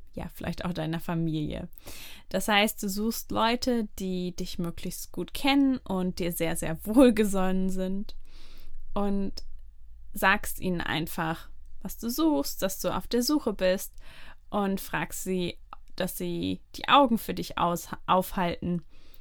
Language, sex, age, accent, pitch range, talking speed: German, female, 10-29, German, 170-215 Hz, 135 wpm